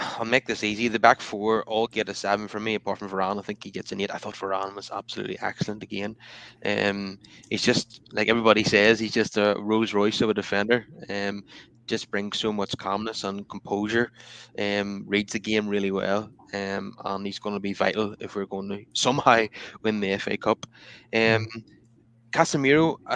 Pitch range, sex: 105-125 Hz, male